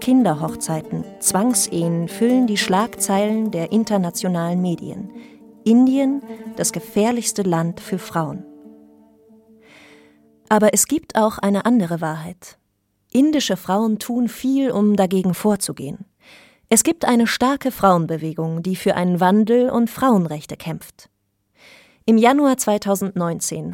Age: 30-49